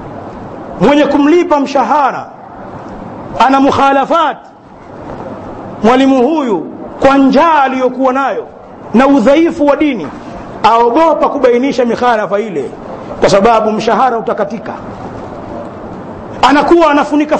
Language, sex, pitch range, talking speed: Swahili, male, 250-310 Hz, 85 wpm